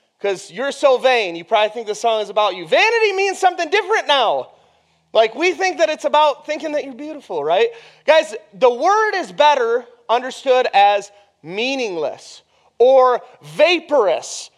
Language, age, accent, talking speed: English, 30-49, American, 155 wpm